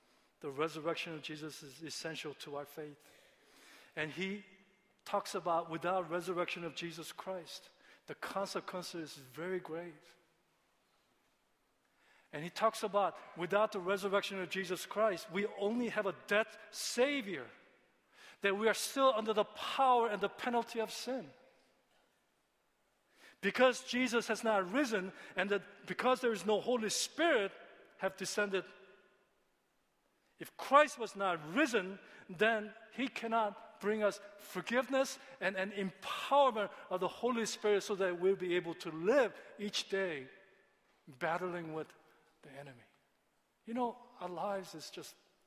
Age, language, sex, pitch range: 50-69, Korean, male, 175-220 Hz